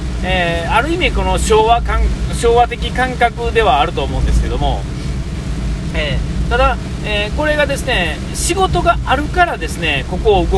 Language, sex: Japanese, male